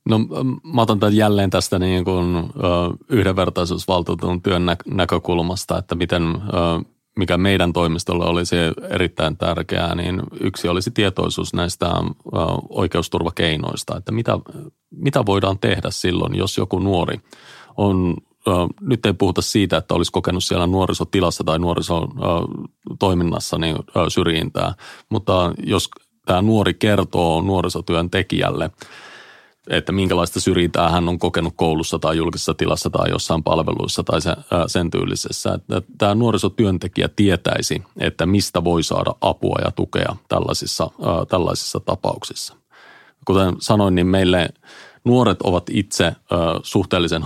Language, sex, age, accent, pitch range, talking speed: Finnish, male, 30-49, native, 85-100 Hz, 115 wpm